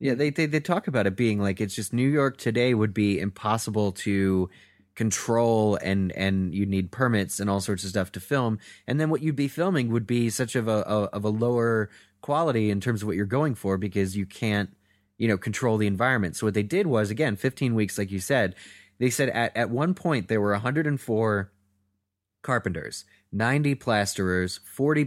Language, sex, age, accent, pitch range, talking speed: English, male, 20-39, American, 100-130 Hz, 215 wpm